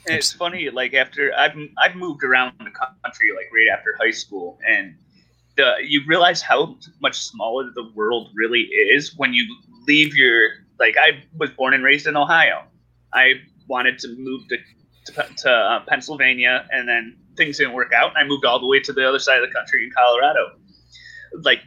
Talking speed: 190 wpm